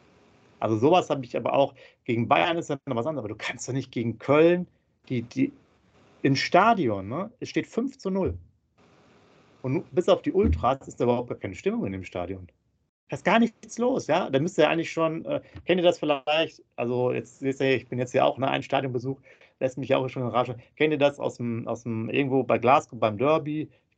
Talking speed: 225 wpm